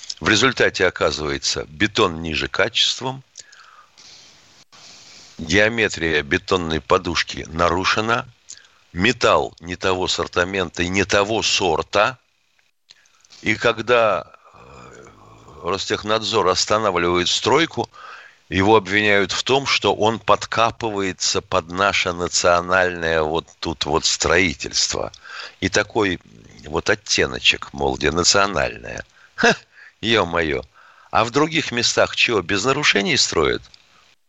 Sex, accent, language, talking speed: male, native, Russian, 95 wpm